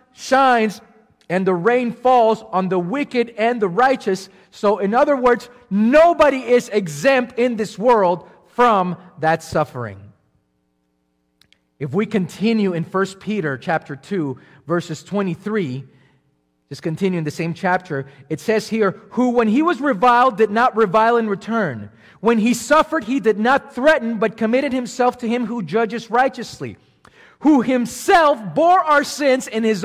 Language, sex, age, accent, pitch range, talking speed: English, male, 40-59, American, 175-255 Hz, 150 wpm